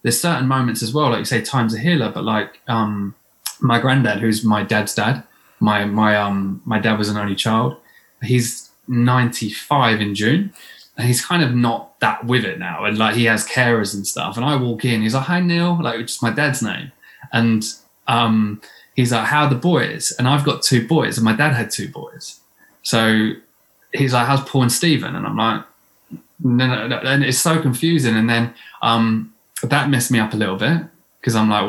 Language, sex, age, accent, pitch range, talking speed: English, male, 20-39, British, 110-125 Hz, 215 wpm